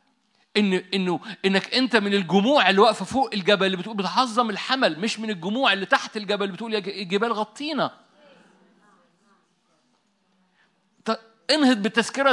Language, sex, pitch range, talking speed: Arabic, male, 170-225 Hz, 120 wpm